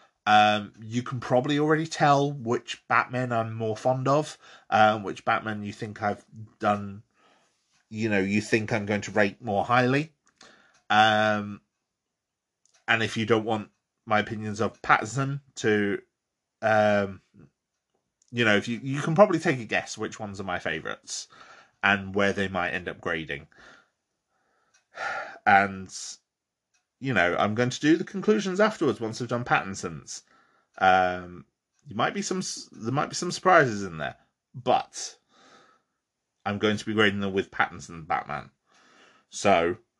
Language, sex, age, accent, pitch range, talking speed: English, male, 30-49, British, 100-130 Hz, 145 wpm